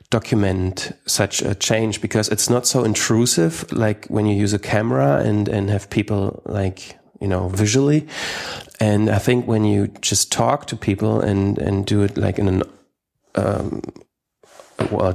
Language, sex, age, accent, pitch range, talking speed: English, male, 30-49, German, 95-115 Hz, 160 wpm